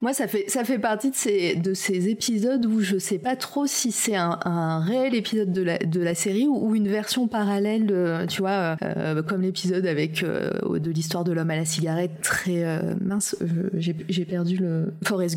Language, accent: French, French